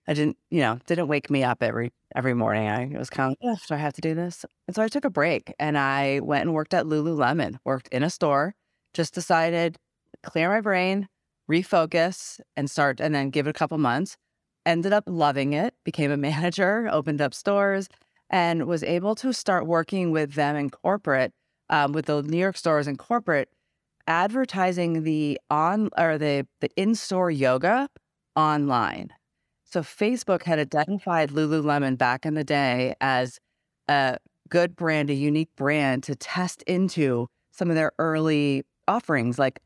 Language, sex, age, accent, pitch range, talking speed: English, female, 30-49, American, 140-175 Hz, 180 wpm